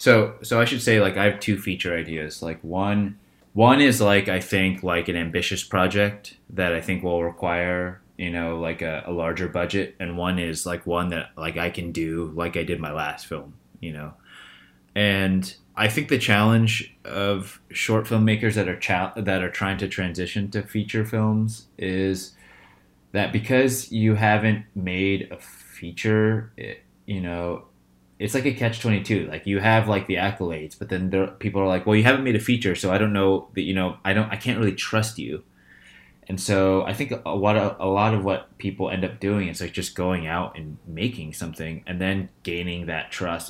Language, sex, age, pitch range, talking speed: English, male, 20-39, 85-105 Hz, 200 wpm